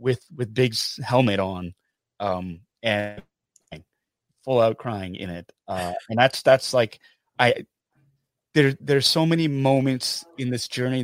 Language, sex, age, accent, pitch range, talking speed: English, male, 30-49, American, 100-125 Hz, 140 wpm